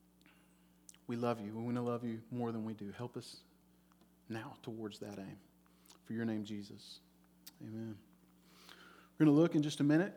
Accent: American